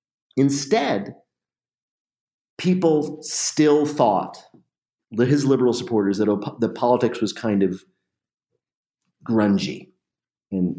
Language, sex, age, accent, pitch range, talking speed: English, male, 40-59, American, 95-125 Hz, 90 wpm